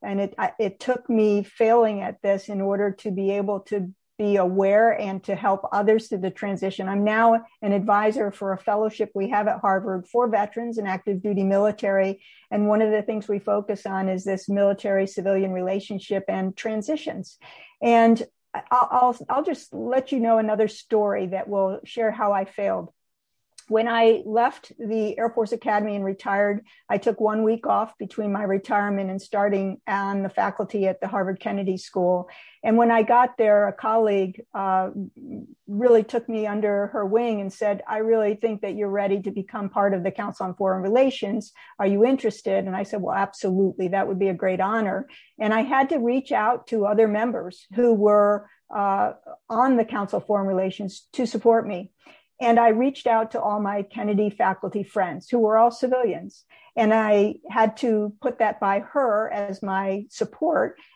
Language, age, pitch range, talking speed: English, 50-69, 195-230 Hz, 185 wpm